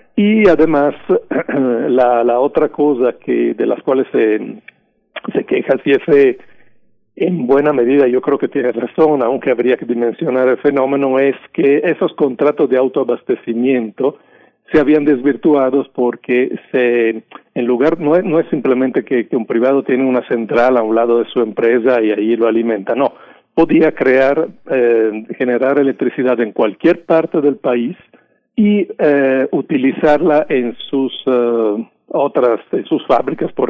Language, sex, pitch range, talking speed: Spanish, male, 120-145 Hz, 155 wpm